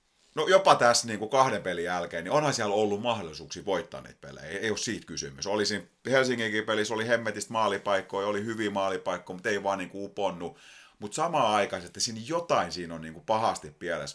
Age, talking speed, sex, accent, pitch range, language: 30-49, 175 wpm, male, native, 80-110 Hz, Finnish